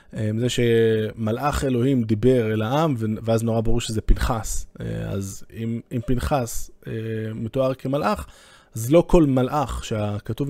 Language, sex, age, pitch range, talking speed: Hebrew, male, 20-39, 110-140 Hz, 125 wpm